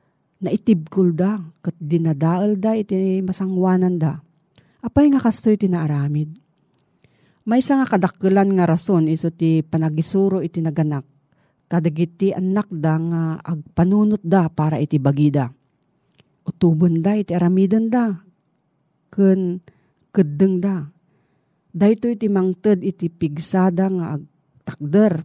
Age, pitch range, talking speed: 40-59, 155-195 Hz, 115 wpm